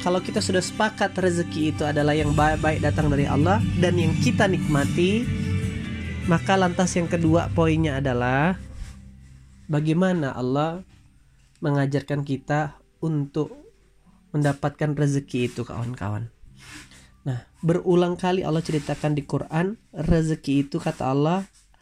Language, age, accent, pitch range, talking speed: Indonesian, 20-39, native, 140-185 Hz, 115 wpm